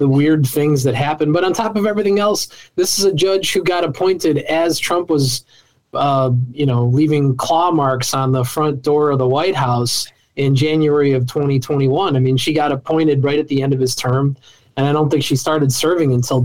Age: 20-39